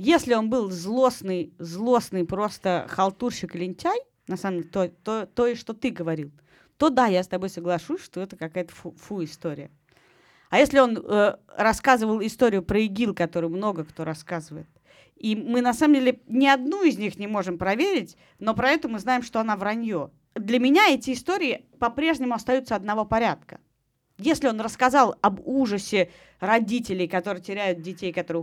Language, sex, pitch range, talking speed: Russian, female, 175-245 Hz, 165 wpm